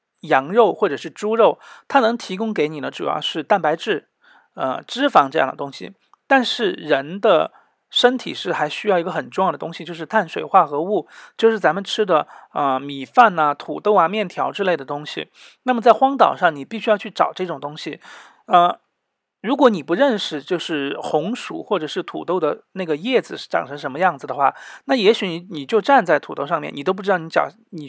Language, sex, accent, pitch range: Chinese, male, native, 160-225 Hz